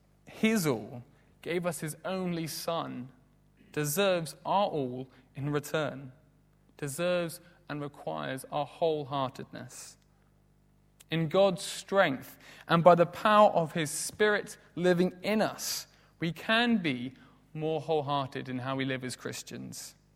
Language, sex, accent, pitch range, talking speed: English, male, British, 150-190 Hz, 120 wpm